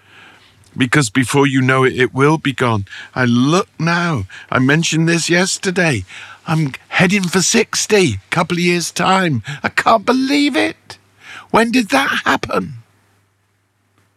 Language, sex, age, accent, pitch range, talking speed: English, male, 50-69, British, 100-135 Hz, 140 wpm